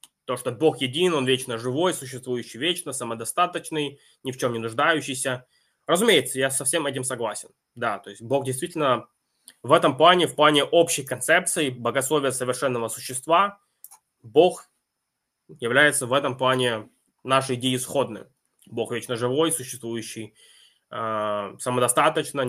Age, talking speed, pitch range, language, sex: 20-39, 130 wpm, 125-165 Hz, Russian, male